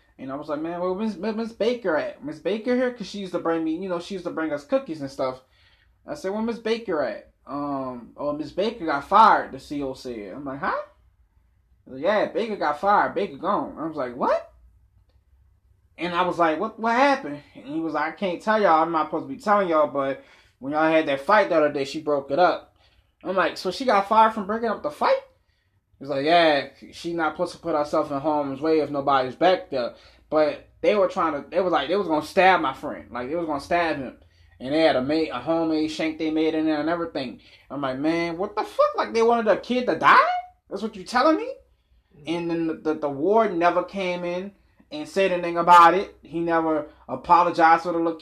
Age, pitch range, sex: 20-39, 150-195 Hz, male